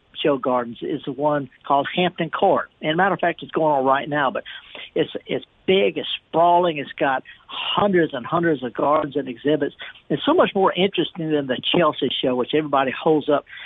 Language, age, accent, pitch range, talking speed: English, 60-79, American, 135-185 Hz, 200 wpm